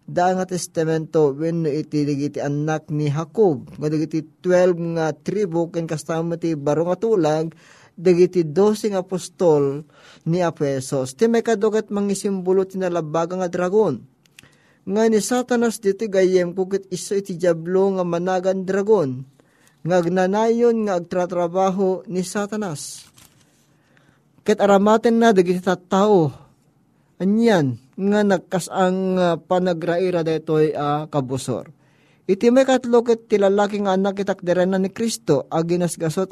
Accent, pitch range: native, 160-200 Hz